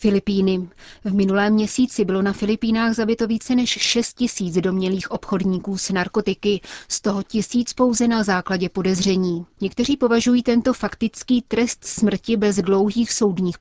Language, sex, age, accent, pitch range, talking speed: Czech, female, 30-49, native, 185-220 Hz, 140 wpm